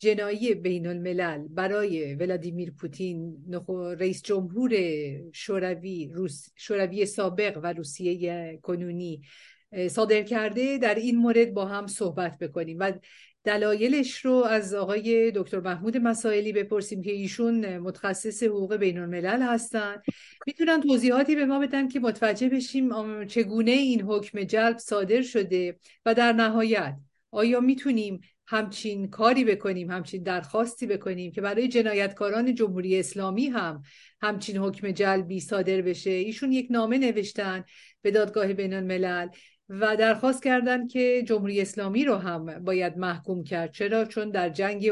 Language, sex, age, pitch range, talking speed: Persian, female, 50-69, 185-235 Hz, 130 wpm